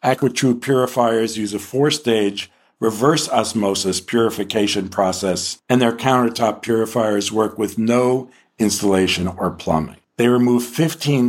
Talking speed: 115 wpm